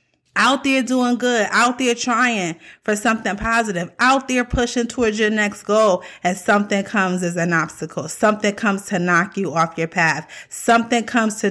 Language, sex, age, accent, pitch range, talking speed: English, female, 30-49, American, 195-245 Hz, 175 wpm